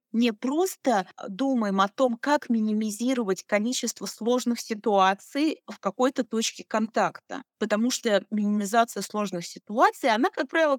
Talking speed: 120 wpm